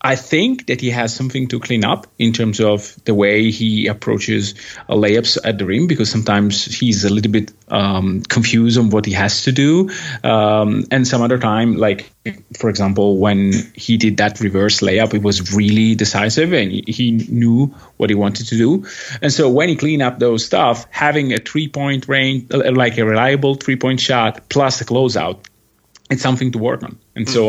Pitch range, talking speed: 105-130 Hz, 195 wpm